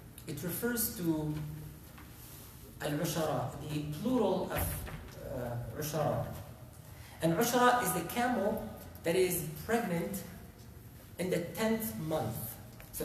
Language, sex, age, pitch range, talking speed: English, male, 40-59, 125-190 Hz, 100 wpm